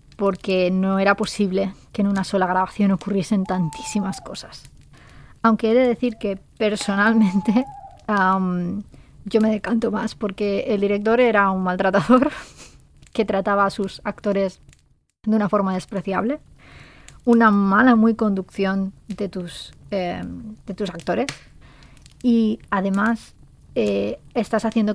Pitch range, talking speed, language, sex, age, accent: 190-225 Hz, 120 wpm, Spanish, female, 20-39, Spanish